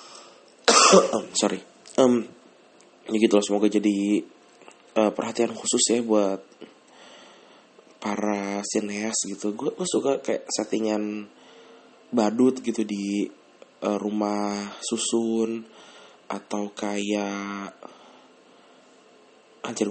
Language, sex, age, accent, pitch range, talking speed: English, male, 20-39, Indonesian, 105-115 Hz, 85 wpm